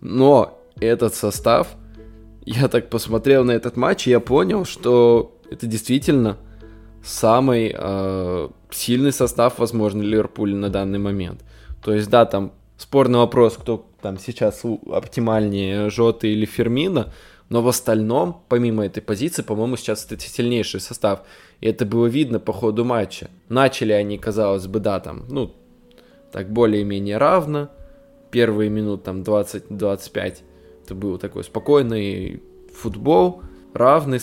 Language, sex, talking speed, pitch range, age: Russian, male, 130 wpm, 105-120 Hz, 20-39